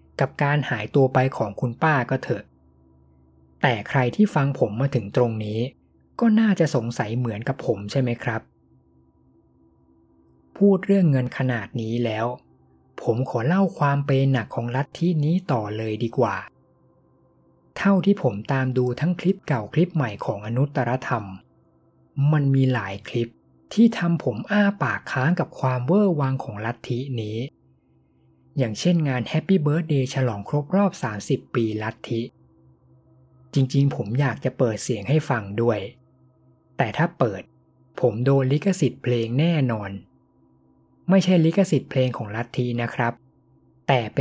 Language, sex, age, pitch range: Thai, male, 20-39, 95-145 Hz